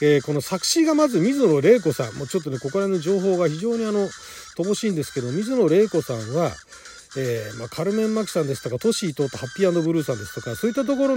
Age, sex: 40-59, male